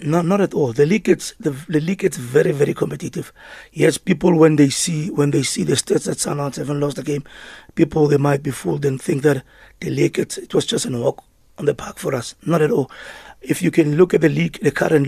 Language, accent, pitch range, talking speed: English, South African, 145-175 Hz, 255 wpm